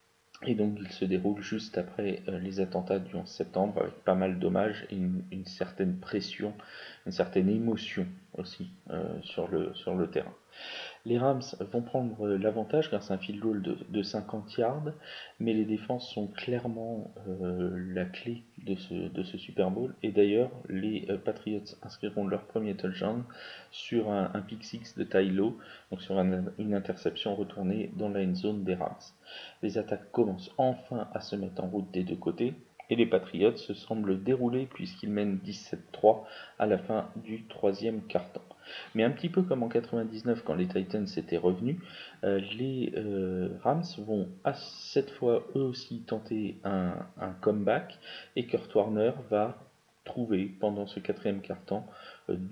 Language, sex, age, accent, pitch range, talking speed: French, male, 30-49, French, 95-120 Hz, 170 wpm